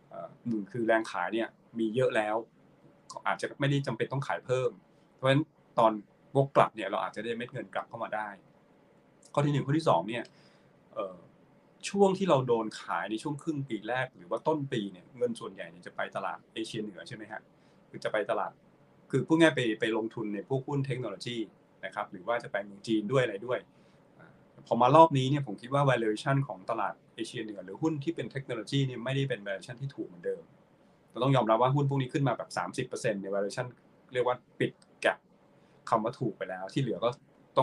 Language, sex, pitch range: Thai, male, 110-145 Hz